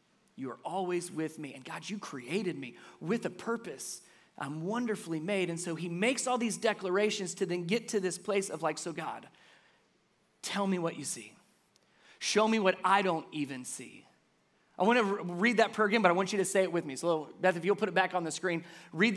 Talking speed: 220 wpm